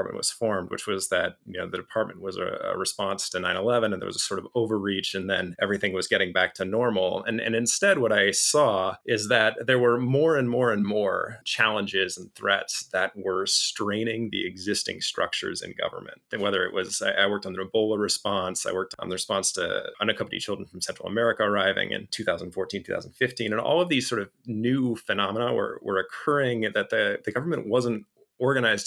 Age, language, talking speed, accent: 30-49, English, 205 wpm, American